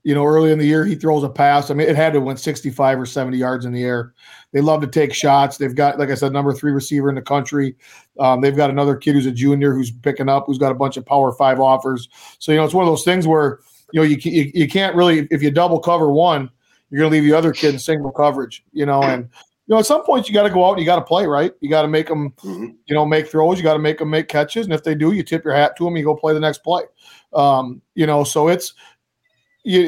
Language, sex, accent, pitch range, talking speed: English, male, American, 140-160 Hz, 295 wpm